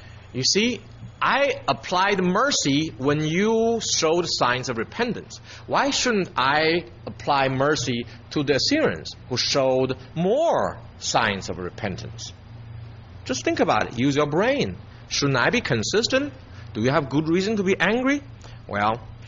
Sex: male